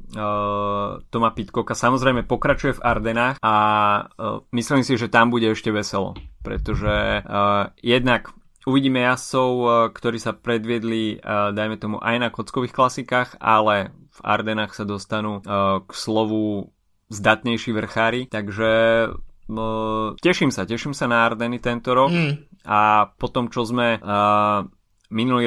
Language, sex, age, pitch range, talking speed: Slovak, male, 20-39, 105-120 Hz, 120 wpm